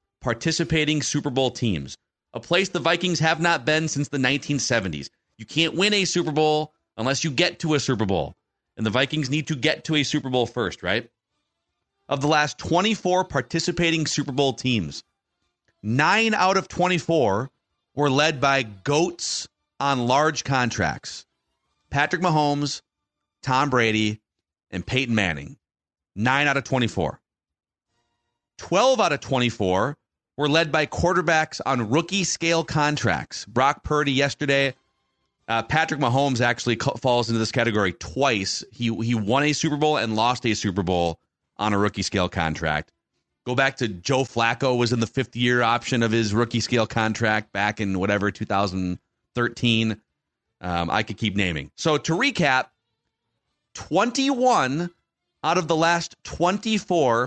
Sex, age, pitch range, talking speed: male, 30-49, 110-160 Hz, 145 wpm